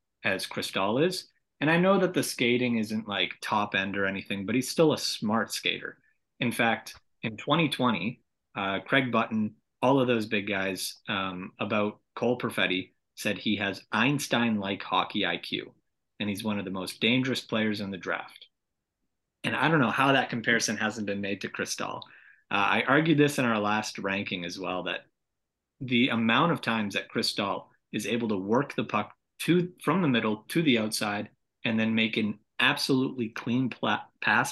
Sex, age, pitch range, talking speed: male, 30-49, 100-125 Hz, 185 wpm